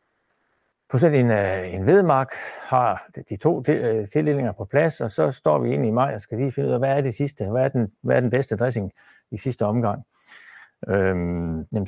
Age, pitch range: 60-79, 100-125 Hz